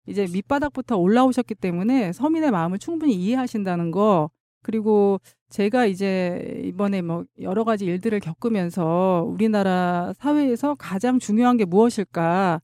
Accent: native